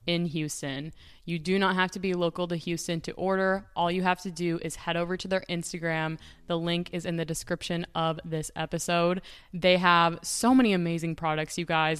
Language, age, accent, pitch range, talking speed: English, 20-39, American, 160-180 Hz, 205 wpm